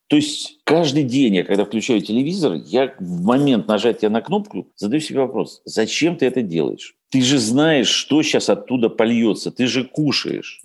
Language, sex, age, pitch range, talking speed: Russian, male, 50-69, 120-170 Hz, 175 wpm